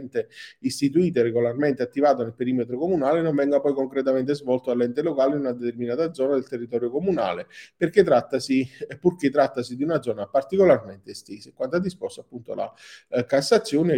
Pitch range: 120-145 Hz